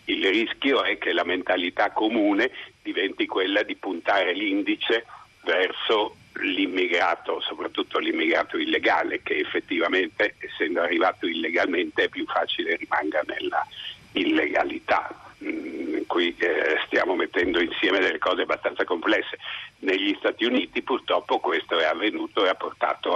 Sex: male